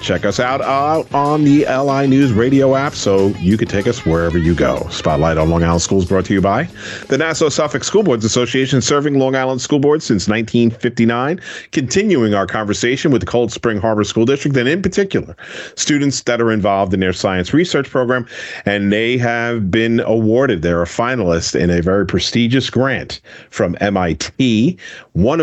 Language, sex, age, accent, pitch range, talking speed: English, male, 40-59, American, 90-120 Hz, 185 wpm